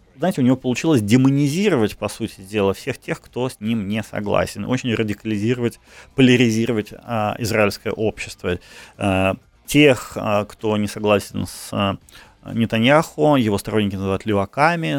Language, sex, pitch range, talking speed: Ukrainian, male, 100-125 Hz, 130 wpm